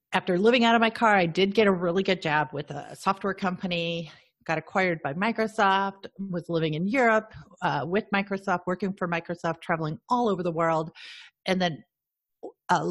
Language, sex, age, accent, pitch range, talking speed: English, female, 40-59, American, 165-205 Hz, 180 wpm